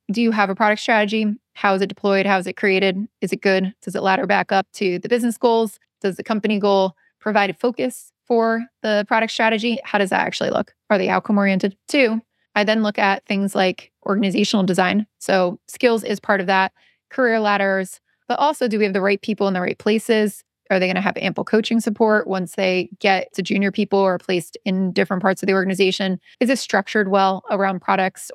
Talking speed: 215 wpm